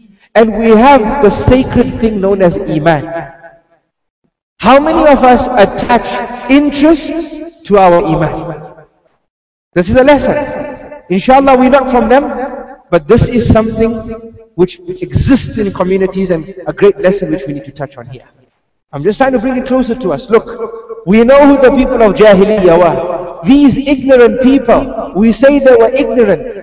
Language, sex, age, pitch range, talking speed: English, male, 50-69, 200-275 Hz, 160 wpm